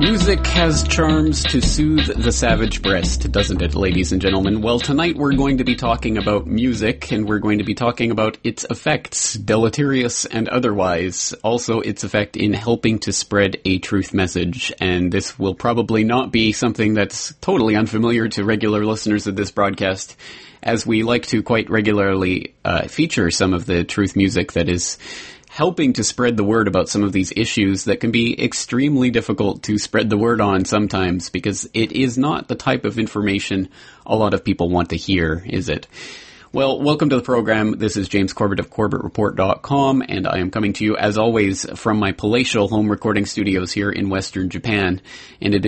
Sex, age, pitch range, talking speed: male, 30-49, 95-115 Hz, 190 wpm